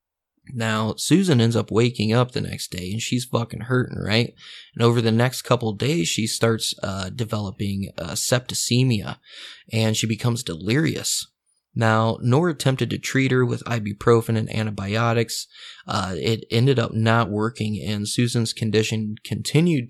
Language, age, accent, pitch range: English, 20-39, American, 105-125 Hz